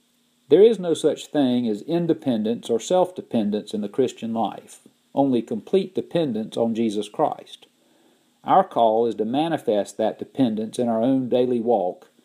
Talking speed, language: 150 wpm, English